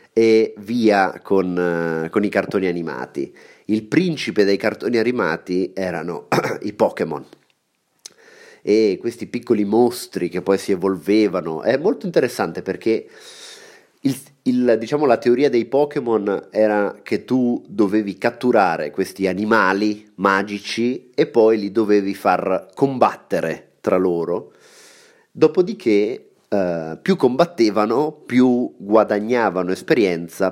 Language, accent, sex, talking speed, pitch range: Italian, native, male, 115 wpm, 95-120 Hz